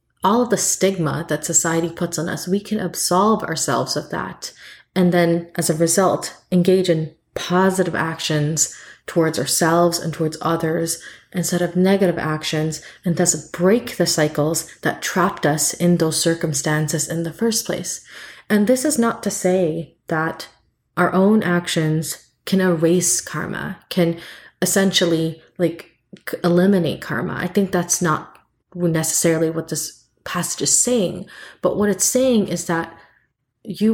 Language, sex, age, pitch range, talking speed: English, female, 20-39, 160-190 Hz, 145 wpm